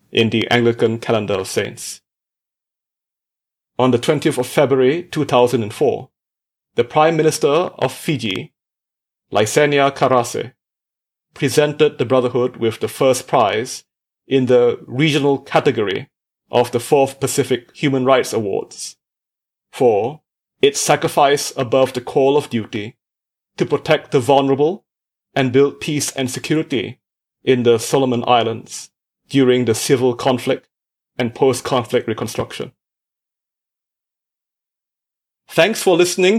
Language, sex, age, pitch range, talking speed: English, male, 30-49, 125-150 Hz, 110 wpm